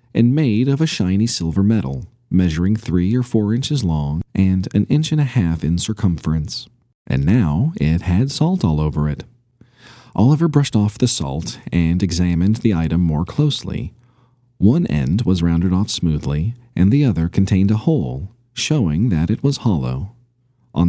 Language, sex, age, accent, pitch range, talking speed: English, male, 40-59, American, 85-120 Hz, 165 wpm